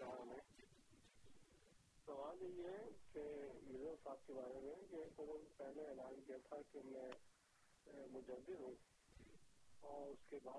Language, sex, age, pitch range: Urdu, male, 40-59, 135-155 Hz